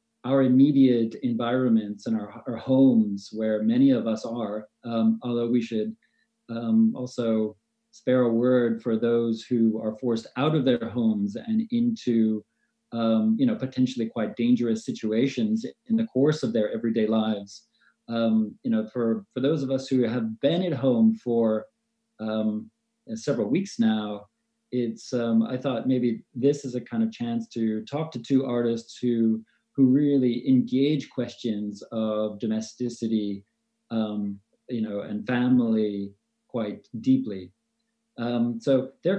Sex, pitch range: male, 115-140 Hz